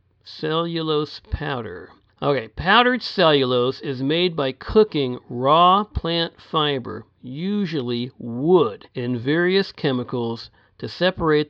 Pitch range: 125-170 Hz